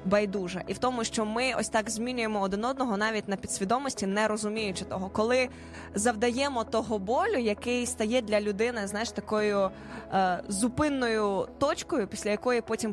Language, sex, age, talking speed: Ukrainian, female, 20-39, 155 wpm